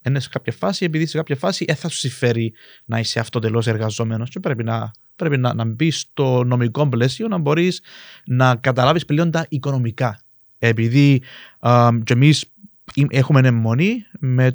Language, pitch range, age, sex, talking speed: Greek, 115-140 Hz, 30-49, male, 155 wpm